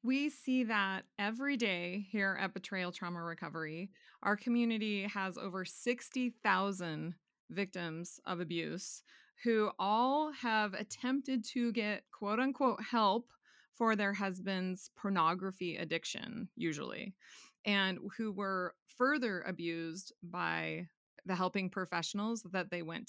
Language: English